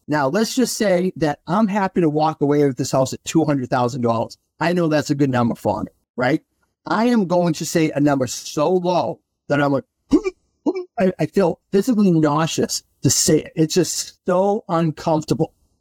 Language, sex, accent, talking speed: English, male, American, 180 wpm